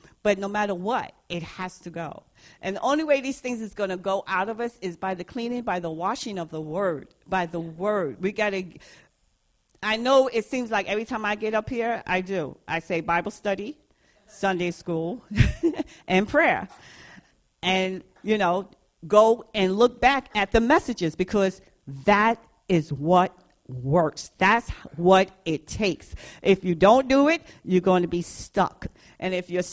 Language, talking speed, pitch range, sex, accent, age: English, 180 wpm, 170-215 Hz, female, American, 50-69